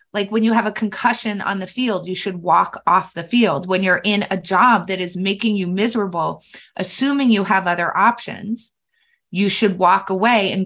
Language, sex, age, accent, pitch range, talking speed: English, female, 20-39, American, 190-230 Hz, 195 wpm